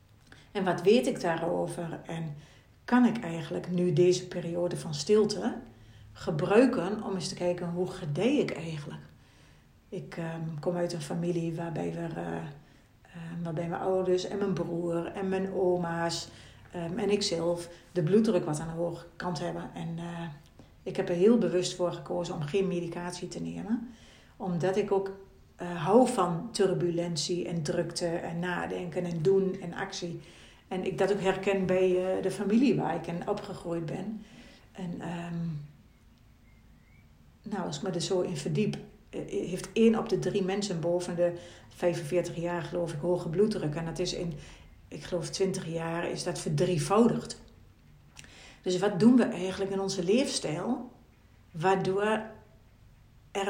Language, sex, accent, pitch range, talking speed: Dutch, female, Dutch, 170-195 Hz, 150 wpm